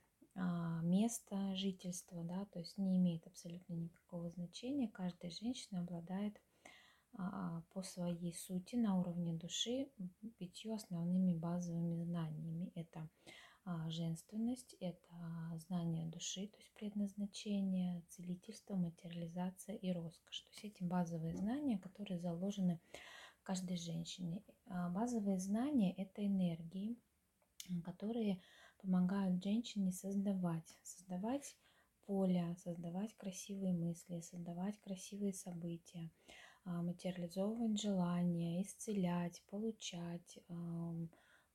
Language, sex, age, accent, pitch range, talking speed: Russian, female, 20-39, native, 175-200 Hz, 95 wpm